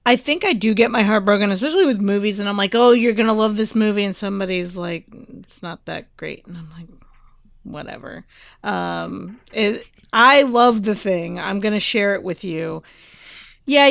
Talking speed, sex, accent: 200 wpm, female, American